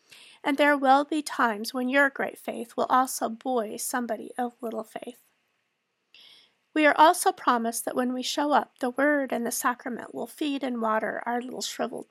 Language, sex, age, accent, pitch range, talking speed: English, female, 40-59, American, 235-275 Hz, 185 wpm